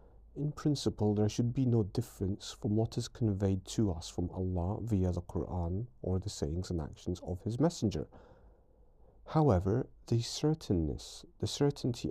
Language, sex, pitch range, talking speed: English, male, 95-110 Hz, 155 wpm